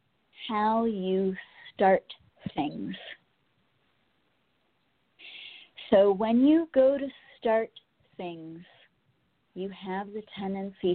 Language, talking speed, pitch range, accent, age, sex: English, 80 wpm, 180-210 Hz, American, 40-59, female